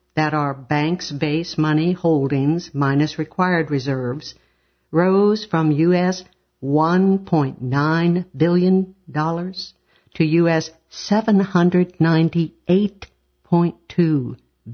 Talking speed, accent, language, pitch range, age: 70 wpm, American, English, 140-170 Hz, 60-79